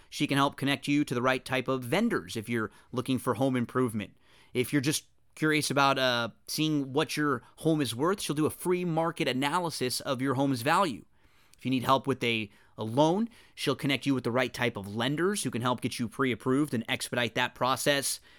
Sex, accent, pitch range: male, American, 120-145 Hz